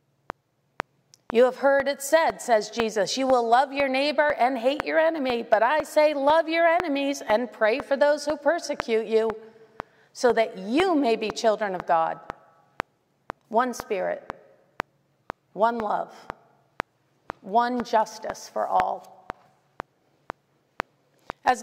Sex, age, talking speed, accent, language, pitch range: female, 40-59, 130 wpm, American, English, 220-275 Hz